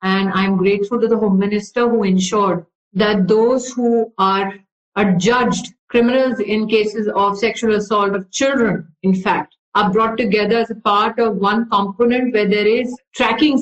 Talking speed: 165 wpm